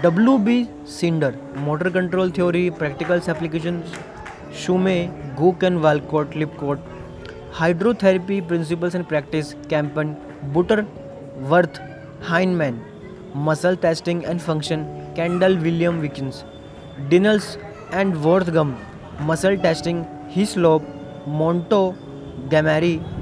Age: 20-39